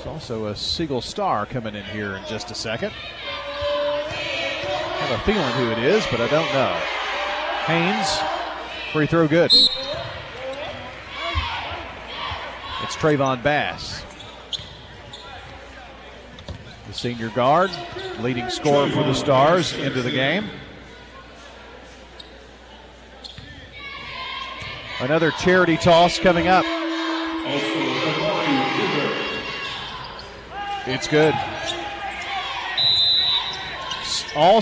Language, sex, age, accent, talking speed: English, male, 40-59, American, 85 wpm